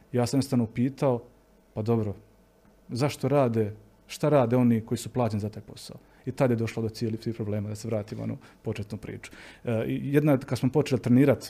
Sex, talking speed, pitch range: male, 195 wpm, 115-135 Hz